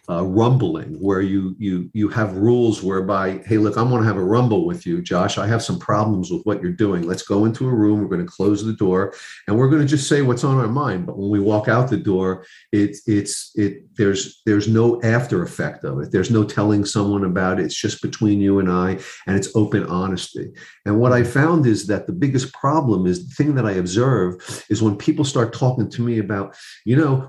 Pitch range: 100-125 Hz